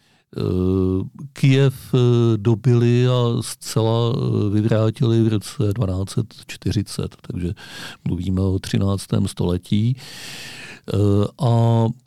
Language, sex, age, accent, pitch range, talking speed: Czech, male, 50-69, native, 105-130 Hz, 70 wpm